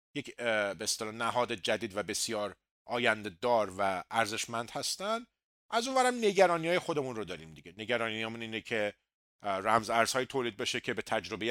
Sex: male